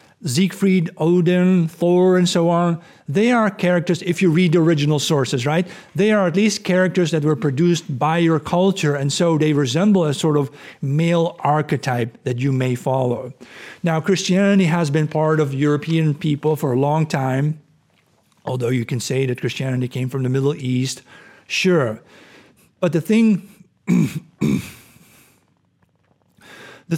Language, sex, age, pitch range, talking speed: English, male, 50-69, 135-175 Hz, 150 wpm